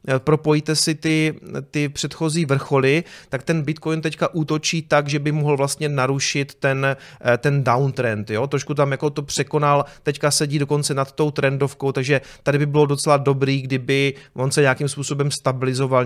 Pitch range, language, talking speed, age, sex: 125-145 Hz, Czech, 165 wpm, 30-49, male